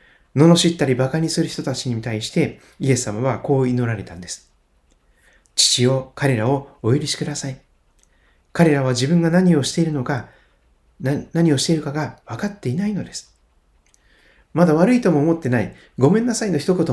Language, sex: Japanese, male